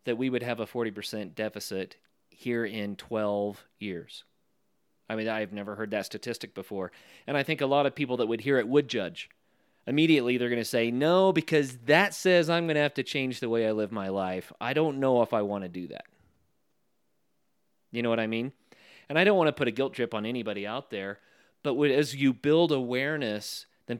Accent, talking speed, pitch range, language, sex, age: American, 215 wpm, 110-140 Hz, English, male, 30-49